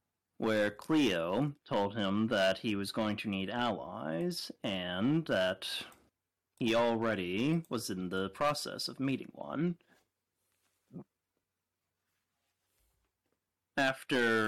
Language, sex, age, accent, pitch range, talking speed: English, male, 30-49, American, 95-120 Hz, 95 wpm